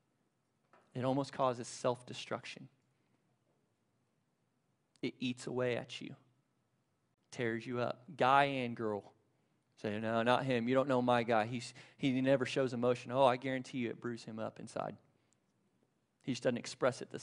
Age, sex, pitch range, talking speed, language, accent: 30-49, male, 125-155 Hz, 150 wpm, English, American